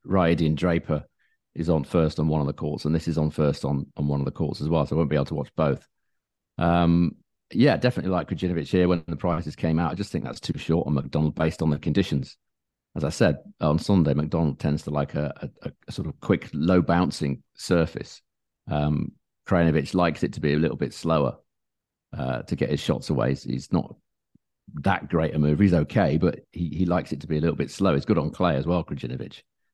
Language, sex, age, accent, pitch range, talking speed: English, male, 40-59, British, 75-90 Hz, 230 wpm